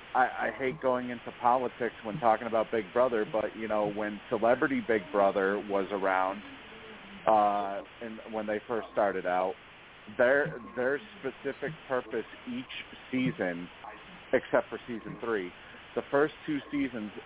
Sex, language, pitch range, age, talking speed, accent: male, English, 105-130 Hz, 50-69, 140 wpm, American